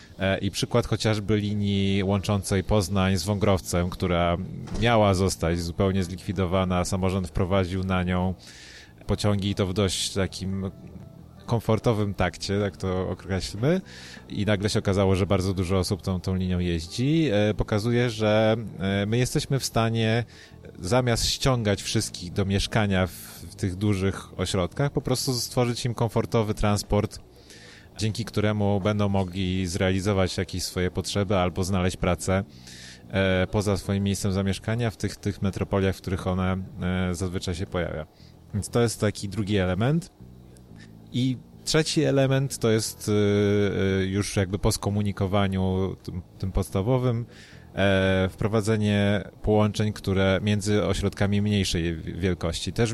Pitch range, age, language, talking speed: 95-105 Hz, 30-49, Polish, 130 wpm